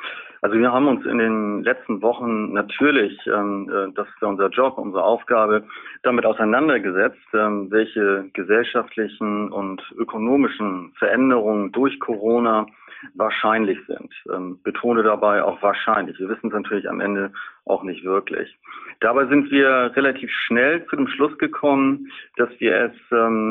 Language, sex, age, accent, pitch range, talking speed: German, male, 40-59, German, 105-130 Hz, 135 wpm